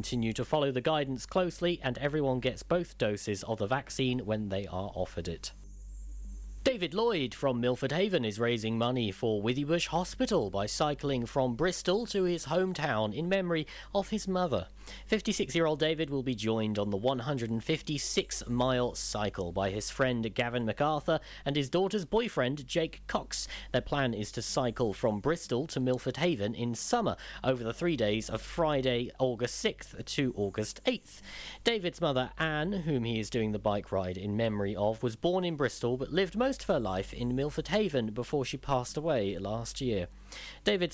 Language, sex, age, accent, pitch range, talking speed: English, male, 40-59, British, 105-150 Hz, 175 wpm